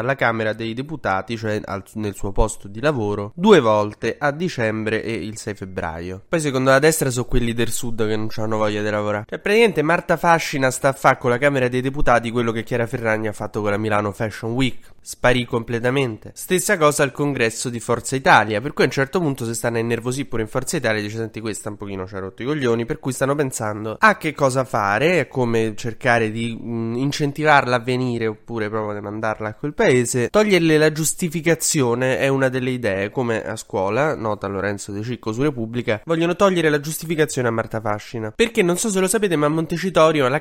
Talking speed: 215 wpm